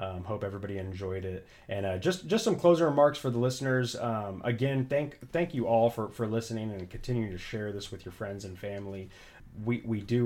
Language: English